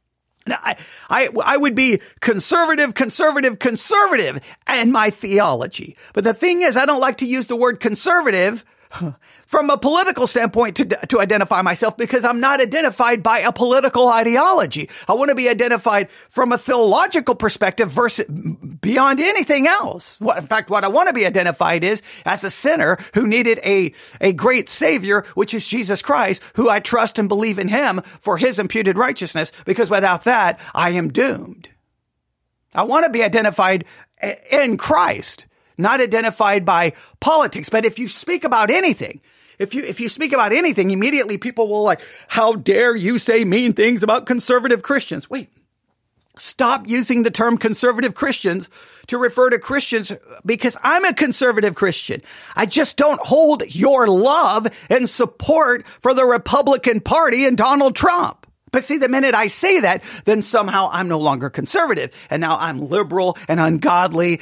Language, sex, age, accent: English, male, 40-59, American